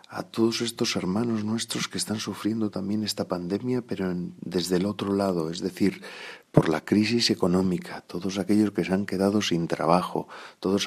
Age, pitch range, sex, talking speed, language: 40-59, 90-110 Hz, male, 170 wpm, Spanish